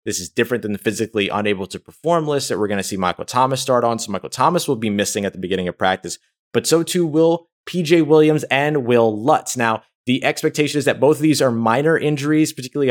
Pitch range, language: 105-145 Hz, English